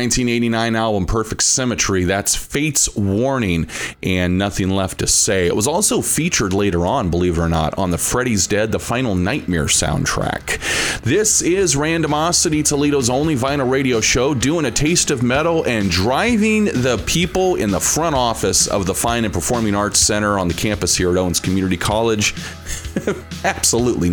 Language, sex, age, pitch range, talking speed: English, male, 30-49, 100-145 Hz, 165 wpm